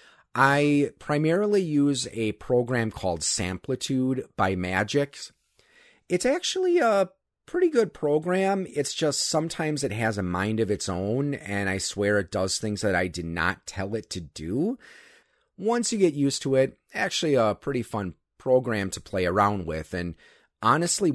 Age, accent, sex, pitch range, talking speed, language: 30-49, American, male, 100-145 Hz, 160 wpm, English